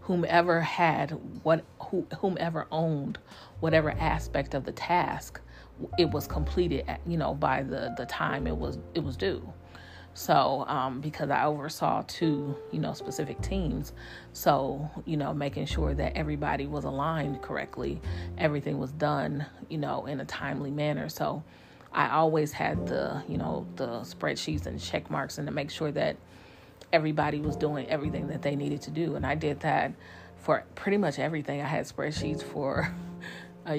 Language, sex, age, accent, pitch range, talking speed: English, female, 30-49, American, 130-160 Hz, 165 wpm